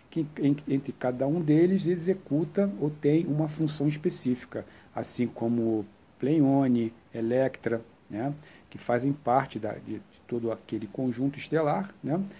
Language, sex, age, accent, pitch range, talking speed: Portuguese, male, 50-69, Brazilian, 120-160 Hz, 125 wpm